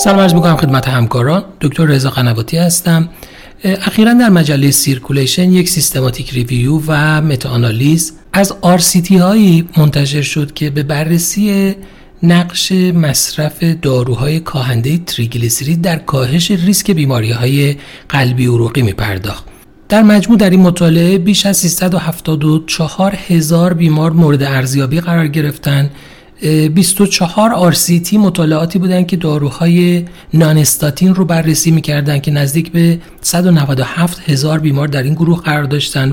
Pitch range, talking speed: 140-180 Hz, 130 wpm